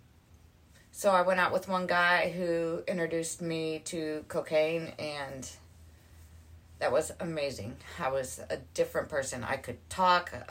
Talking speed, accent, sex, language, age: 135 wpm, American, female, English, 30-49